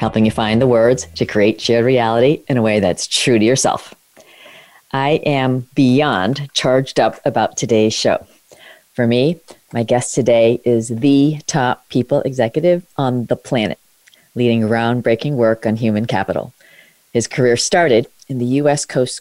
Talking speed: 155 wpm